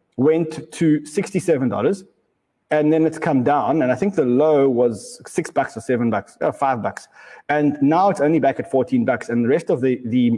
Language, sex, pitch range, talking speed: English, male, 120-170 Hz, 215 wpm